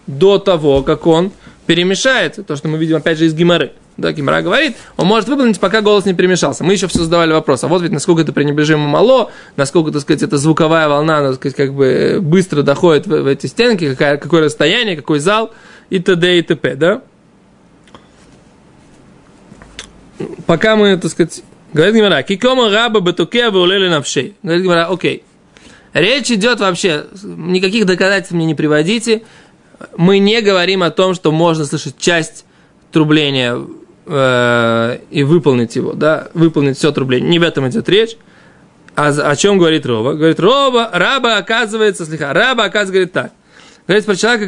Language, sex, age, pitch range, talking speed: Russian, male, 20-39, 150-205 Hz, 165 wpm